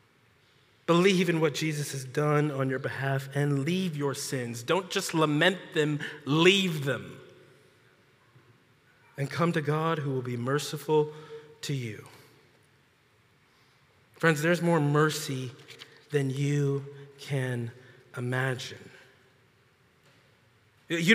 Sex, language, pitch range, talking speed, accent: male, English, 135-180 Hz, 110 wpm, American